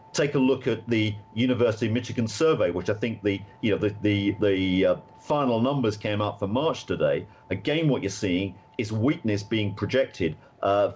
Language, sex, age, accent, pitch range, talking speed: English, male, 50-69, British, 105-130 Hz, 190 wpm